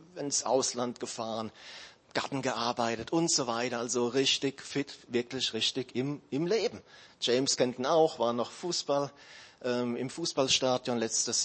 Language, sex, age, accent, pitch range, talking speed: German, male, 40-59, German, 115-140 Hz, 135 wpm